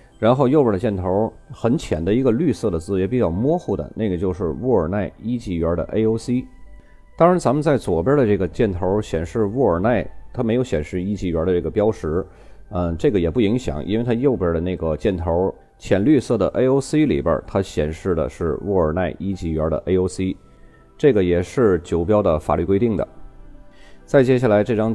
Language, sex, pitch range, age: Chinese, male, 85-110 Hz, 30-49